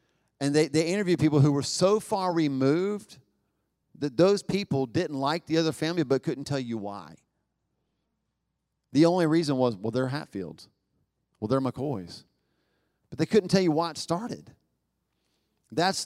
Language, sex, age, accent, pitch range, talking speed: English, male, 40-59, American, 135-175 Hz, 155 wpm